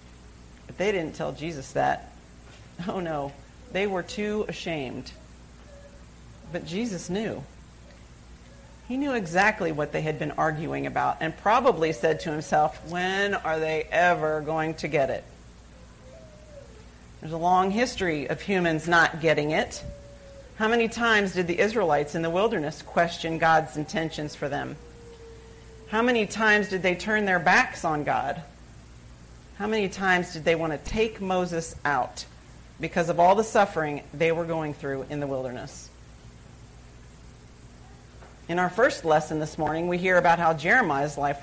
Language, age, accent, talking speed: English, 40-59, American, 150 wpm